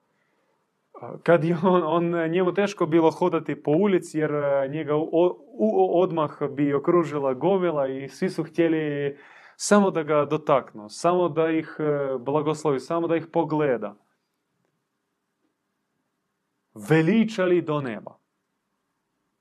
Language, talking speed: Croatian, 110 wpm